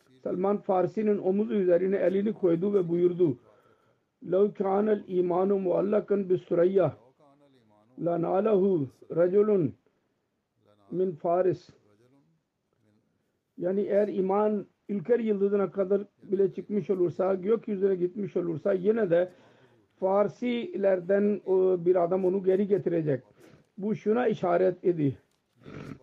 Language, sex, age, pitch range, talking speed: Turkish, male, 50-69, 175-205 Hz, 95 wpm